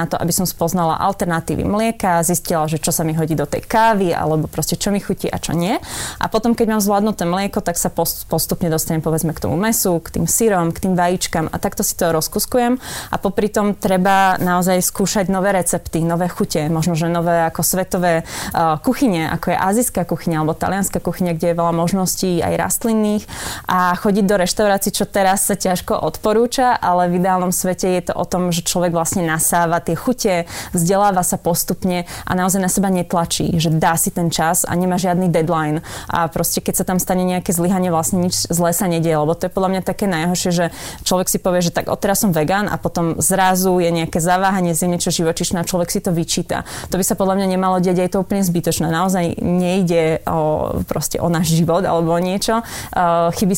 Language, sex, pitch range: Slovak, female, 170-195 Hz